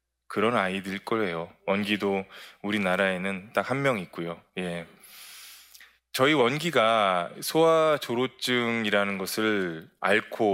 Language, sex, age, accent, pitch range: Korean, male, 20-39, native, 95-125 Hz